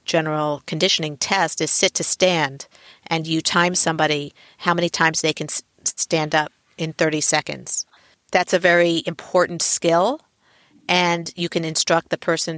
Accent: American